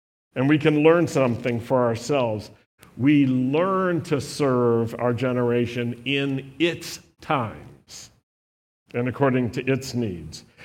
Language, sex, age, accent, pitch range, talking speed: English, male, 50-69, American, 125-175 Hz, 120 wpm